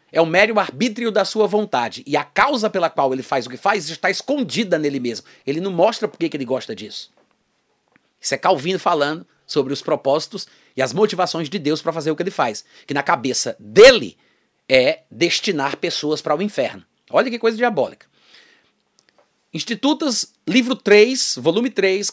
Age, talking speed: 30-49, 185 wpm